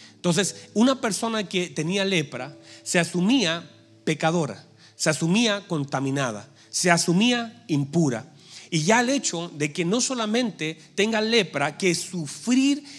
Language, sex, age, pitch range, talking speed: Spanish, male, 40-59, 165-215 Hz, 125 wpm